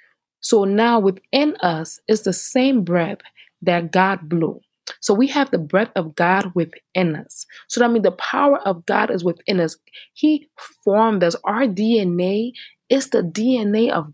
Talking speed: 165 wpm